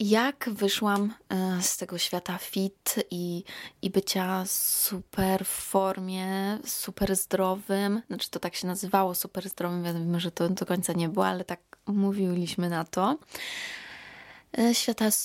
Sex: female